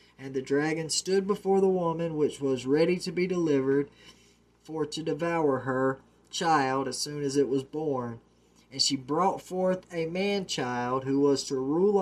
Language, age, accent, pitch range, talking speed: English, 20-39, American, 135-185 Hz, 170 wpm